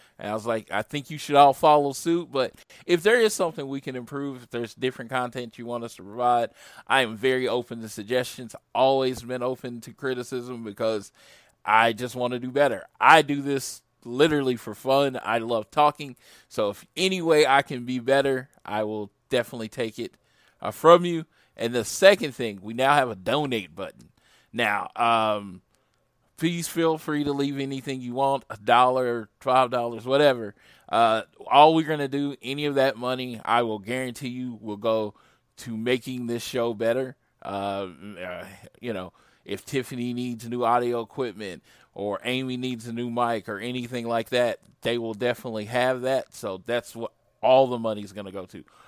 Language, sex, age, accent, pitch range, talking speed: English, male, 20-39, American, 115-135 Hz, 185 wpm